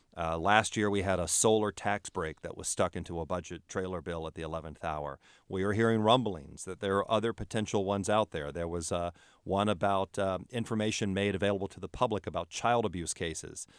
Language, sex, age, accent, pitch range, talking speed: English, male, 40-59, American, 85-110 Hz, 215 wpm